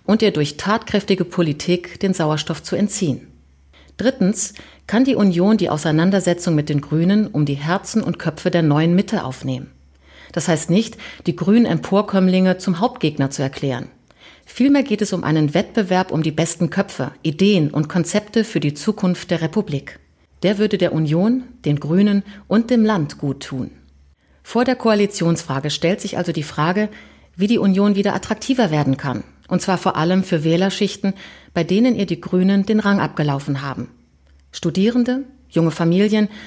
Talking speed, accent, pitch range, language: 165 wpm, German, 160-205 Hz, German